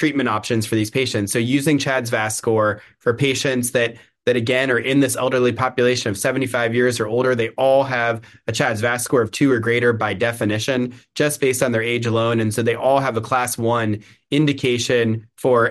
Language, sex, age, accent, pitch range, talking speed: English, male, 20-39, American, 115-140 Hz, 205 wpm